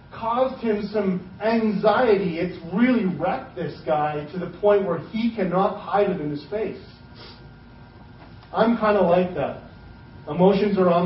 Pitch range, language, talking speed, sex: 130-180 Hz, English, 150 wpm, male